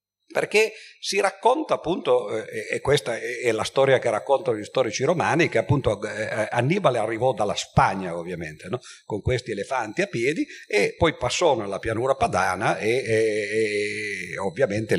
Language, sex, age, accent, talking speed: Italian, male, 50-69, native, 145 wpm